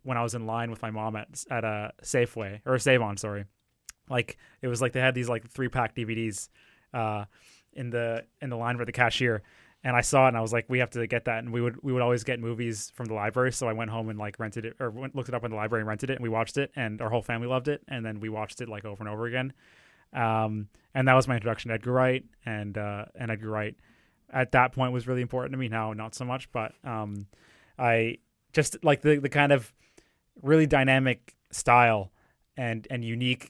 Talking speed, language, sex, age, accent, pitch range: 255 wpm, English, male, 20-39, American, 110-130 Hz